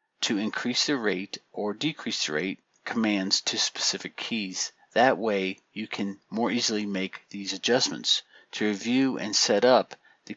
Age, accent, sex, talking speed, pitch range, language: 50-69, American, male, 155 wpm, 105-130 Hz, English